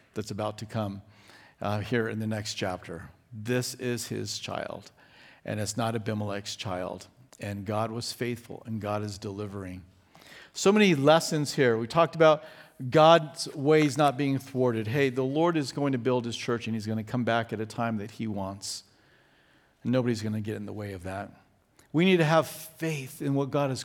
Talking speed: 195 wpm